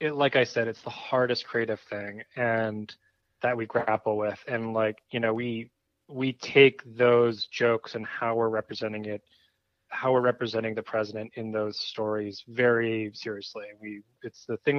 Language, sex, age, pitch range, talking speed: English, male, 20-39, 105-120 Hz, 165 wpm